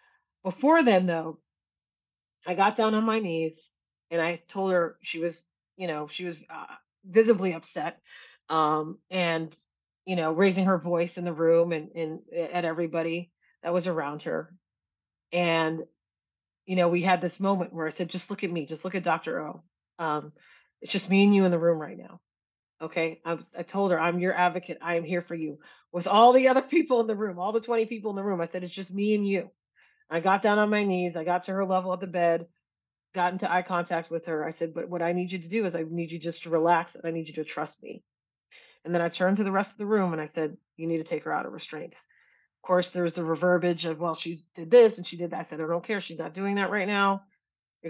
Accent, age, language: American, 30-49, English